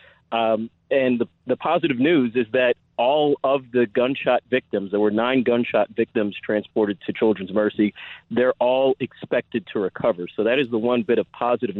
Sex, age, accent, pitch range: male, 40-59, American, 105-130 Hz